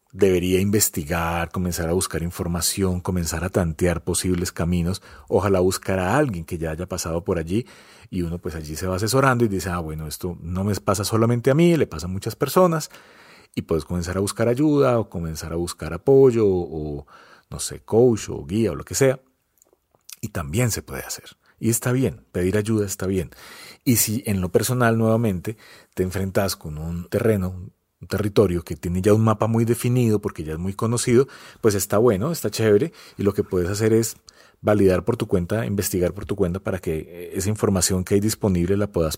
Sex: male